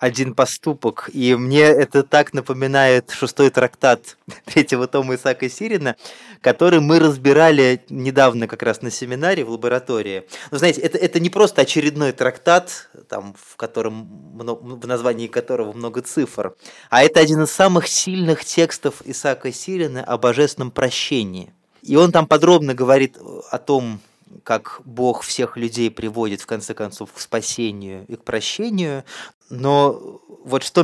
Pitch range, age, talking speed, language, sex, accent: 125-160 Hz, 20-39, 145 wpm, Russian, male, native